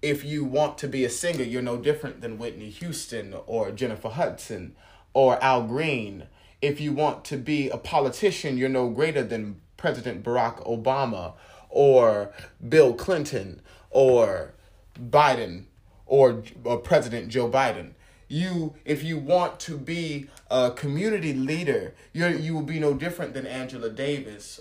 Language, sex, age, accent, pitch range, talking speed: English, male, 30-49, American, 120-170 Hz, 150 wpm